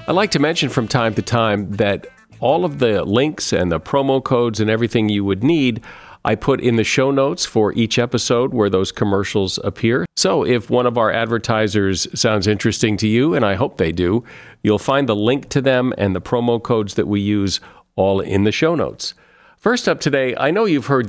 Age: 50-69